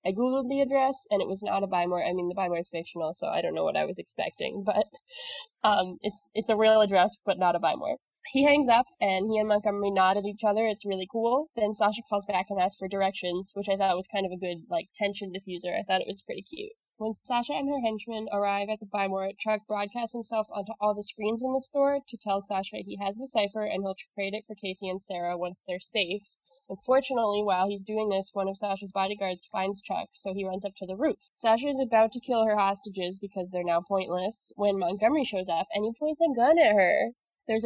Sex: female